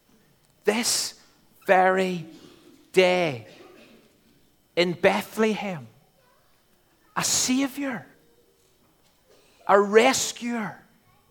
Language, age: English, 40-59